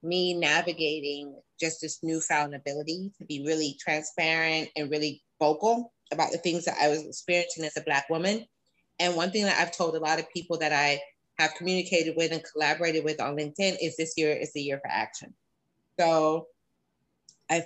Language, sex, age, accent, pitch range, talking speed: English, female, 30-49, American, 150-175 Hz, 185 wpm